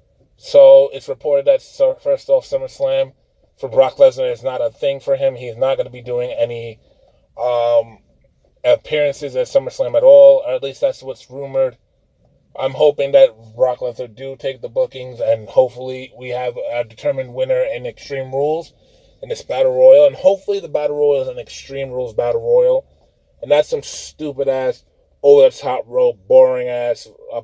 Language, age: English, 20-39